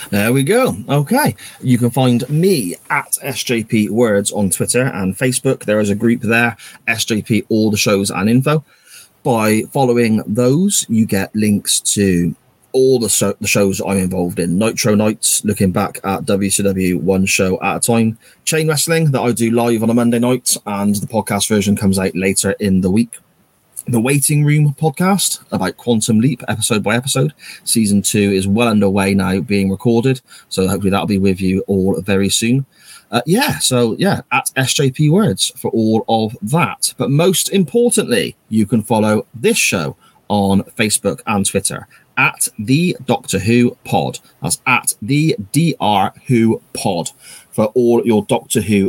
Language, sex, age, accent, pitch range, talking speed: English, male, 30-49, British, 100-125 Hz, 170 wpm